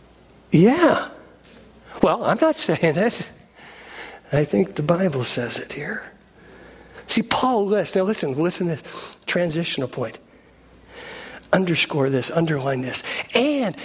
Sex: male